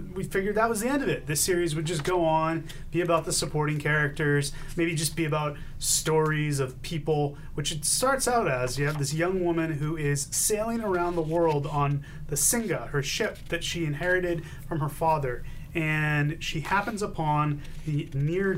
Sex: male